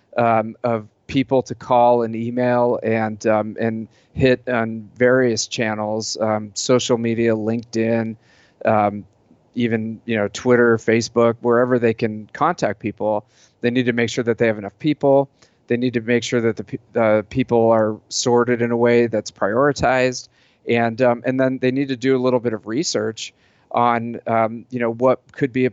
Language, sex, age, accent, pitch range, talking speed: English, male, 30-49, American, 115-125 Hz, 175 wpm